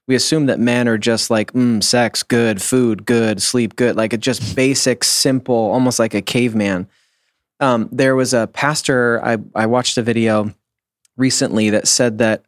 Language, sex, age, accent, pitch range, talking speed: English, male, 20-39, American, 105-125 Hz, 180 wpm